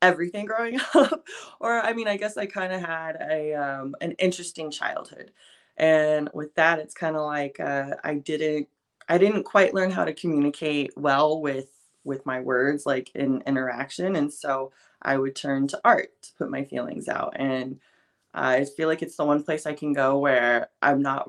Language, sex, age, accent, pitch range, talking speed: English, female, 20-39, American, 140-180 Hz, 195 wpm